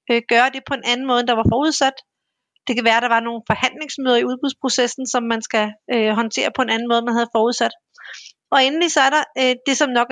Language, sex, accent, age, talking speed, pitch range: Danish, female, native, 30-49, 235 wpm, 235-275 Hz